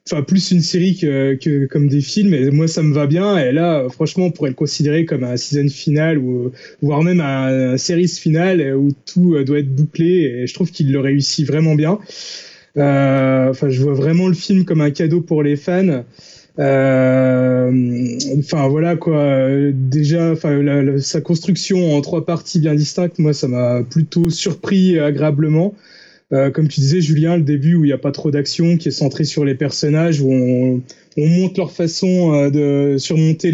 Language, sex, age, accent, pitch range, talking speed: French, male, 20-39, French, 140-170 Hz, 195 wpm